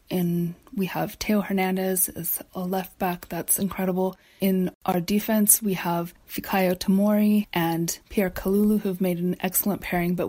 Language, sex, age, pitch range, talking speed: English, female, 20-39, 170-200 Hz, 165 wpm